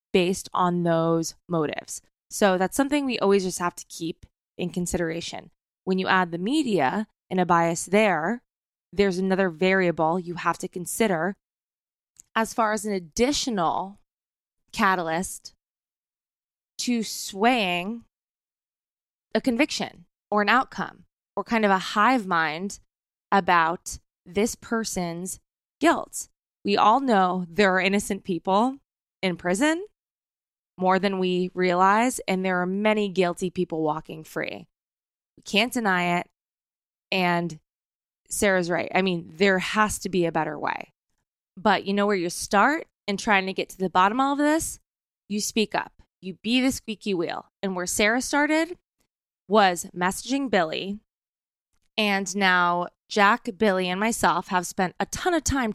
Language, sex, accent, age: English, female, American, 20-39